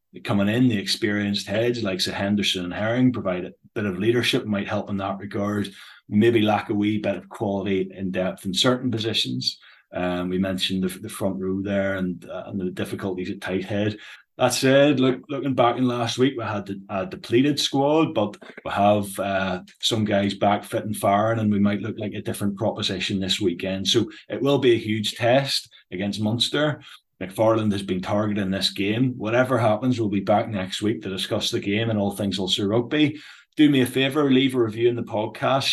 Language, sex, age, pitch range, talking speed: English, male, 20-39, 95-120 Hz, 205 wpm